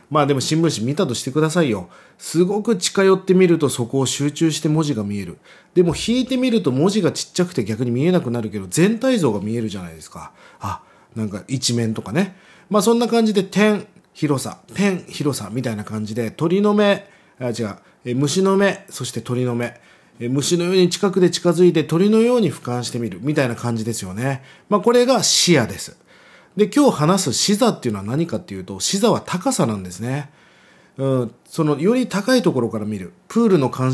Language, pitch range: Japanese, 120-195 Hz